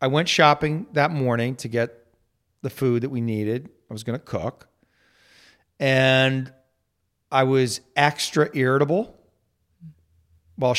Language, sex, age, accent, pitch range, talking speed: English, male, 40-59, American, 95-130 Hz, 130 wpm